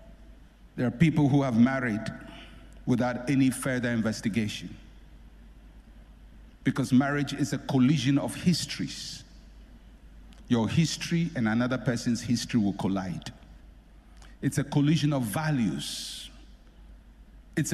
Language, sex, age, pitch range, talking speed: English, male, 60-79, 135-225 Hz, 105 wpm